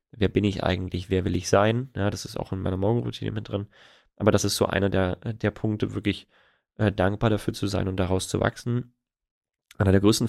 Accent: German